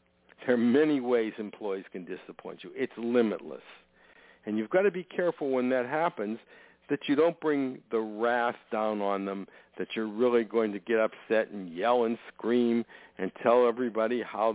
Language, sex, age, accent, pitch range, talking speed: English, male, 60-79, American, 105-135 Hz, 175 wpm